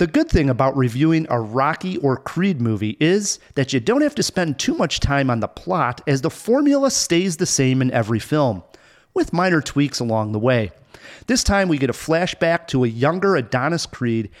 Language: English